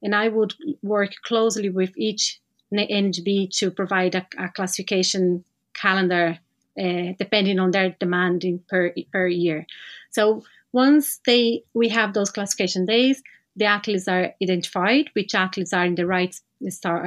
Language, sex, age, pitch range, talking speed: English, female, 30-49, 185-225 Hz, 150 wpm